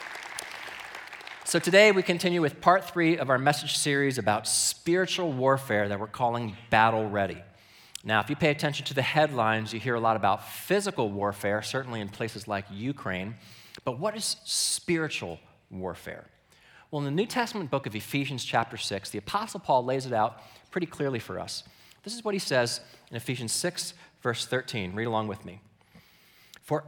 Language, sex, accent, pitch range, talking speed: English, male, American, 120-180 Hz, 175 wpm